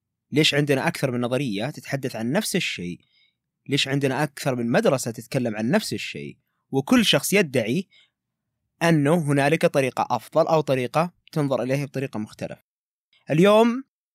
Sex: male